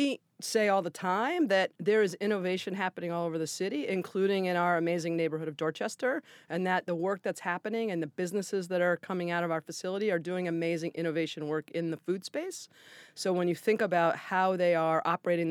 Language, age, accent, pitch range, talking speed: English, 40-59, American, 165-195 Hz, 215 wpm